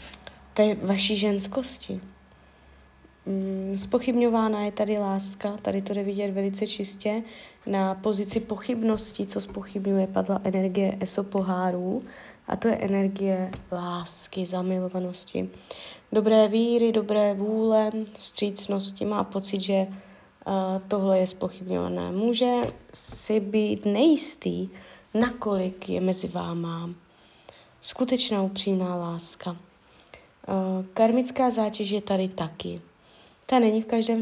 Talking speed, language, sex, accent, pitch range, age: 105 wpm, Czech, female, native, 190-215 Hz, 20-39